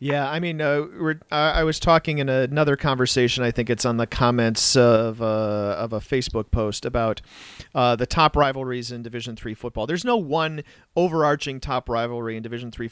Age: 40-59